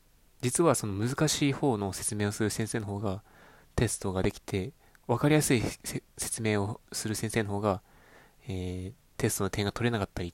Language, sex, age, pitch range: Japanese, male, 20-39, 95-140 Hz